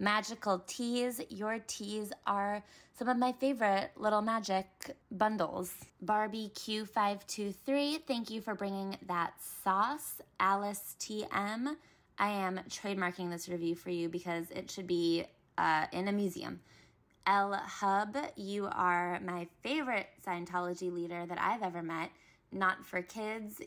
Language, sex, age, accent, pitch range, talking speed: English, female, 20-39, American, 180-220 Hz, 135 wpm